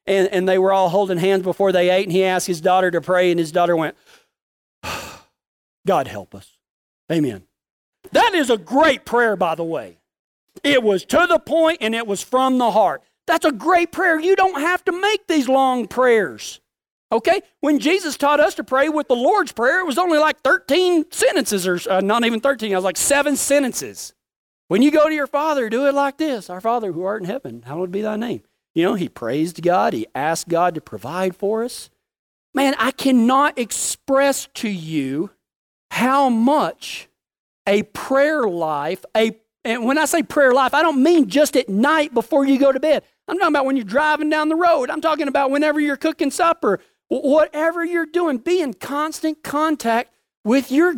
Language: English